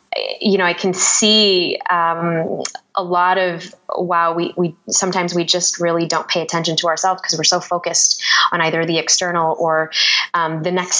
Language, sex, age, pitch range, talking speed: English, female, 20-39, 160-185 Hz, 180 wpm